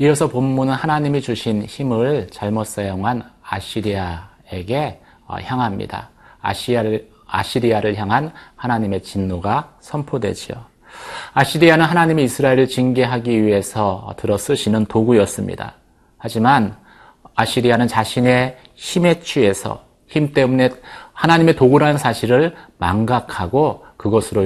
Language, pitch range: Korean, 105-140 Hz